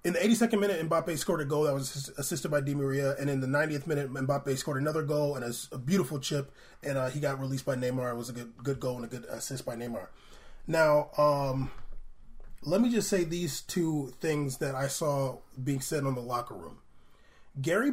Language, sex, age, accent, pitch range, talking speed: English, male, 20-39, American, 135-195 Hz, 220 wpm